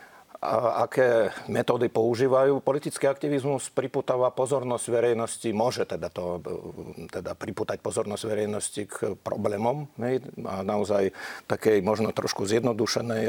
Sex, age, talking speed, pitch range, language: male, 50-69, 115 wpm, 115-135 Hz, Slovak